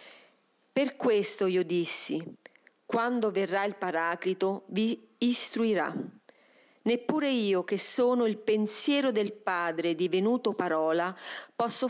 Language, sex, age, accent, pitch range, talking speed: Italian, female, 40-59, native, 190-250 Hz, 105 wpm